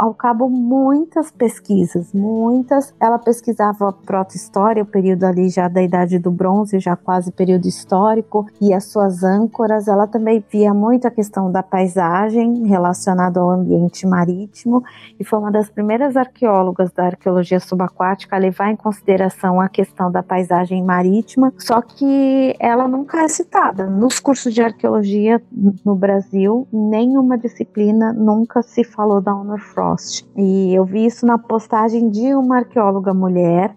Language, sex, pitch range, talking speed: Portuguese, female, 190-235 Hz, 150 wpm